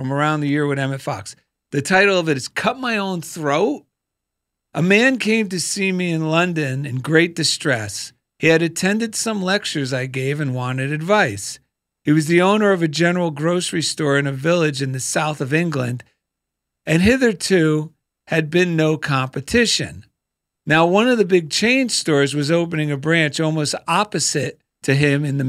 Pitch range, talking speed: 140-190 Hz, 180 wpm